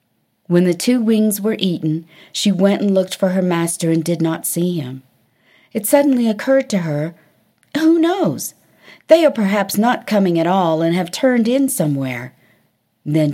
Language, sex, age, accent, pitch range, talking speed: English, female, 50-69, American, 170-230 Hz, 170 wpm